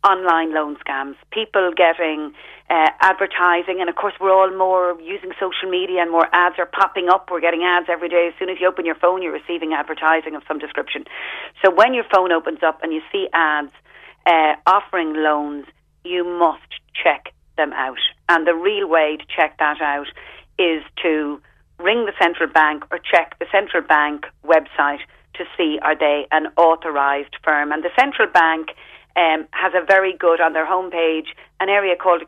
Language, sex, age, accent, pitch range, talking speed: English, female, 40-59, Irish, 155-180 Hz, 185 wpm